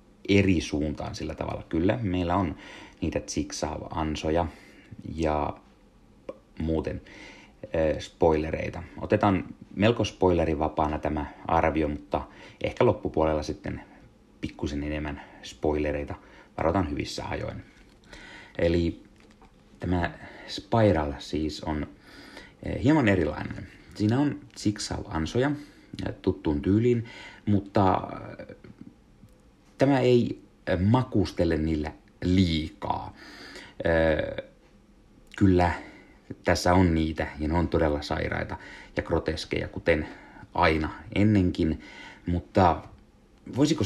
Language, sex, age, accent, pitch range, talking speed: Finnish, male, 30-49, native, 80-100 Hz, 85 wpm